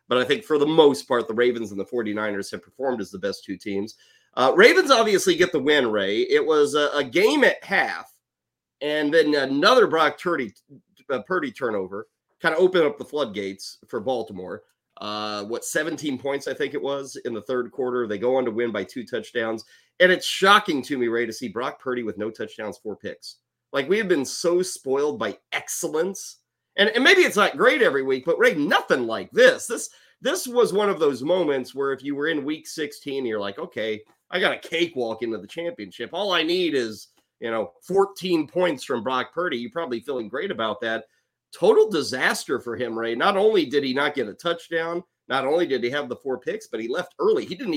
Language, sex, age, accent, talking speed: English, male, 30-49, American, 215 wpm